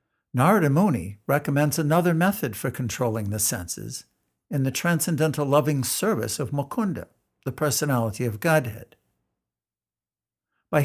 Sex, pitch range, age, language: male, 120-165 Hz, 60-79, English